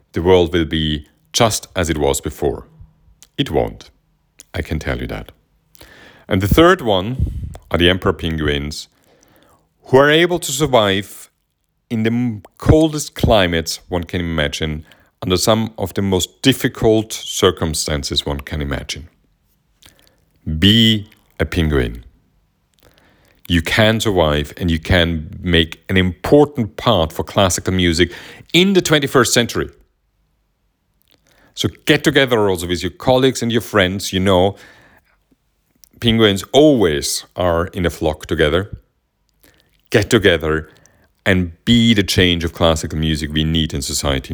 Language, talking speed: English, 135 wpm